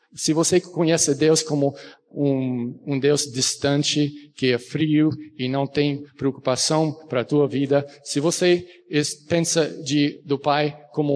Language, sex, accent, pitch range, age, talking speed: Portuguese, male, Brazilian, 130-155 Hz, 60-79, 145 wpm